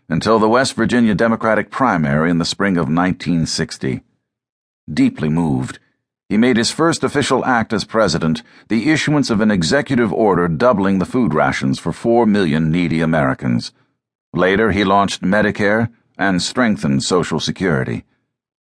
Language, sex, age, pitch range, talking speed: English, male, 50-69, 85-125 Hz, 140 wpm